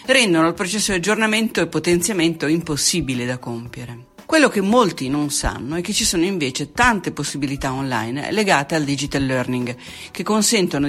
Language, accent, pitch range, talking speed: Italian, native, 145-210 Hz, 160 wpm